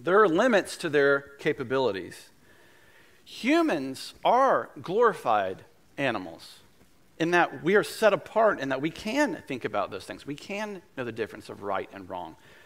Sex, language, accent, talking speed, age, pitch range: male, English, American, 155 wpm, 40-59, 135-190 Hz